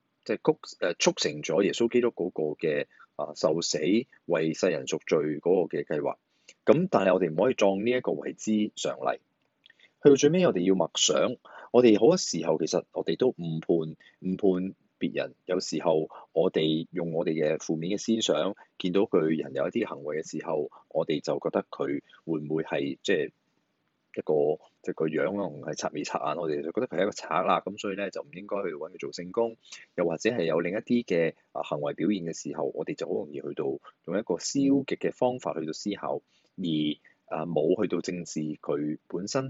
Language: Chinese